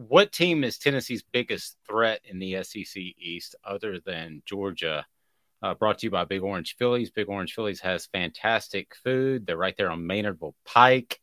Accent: American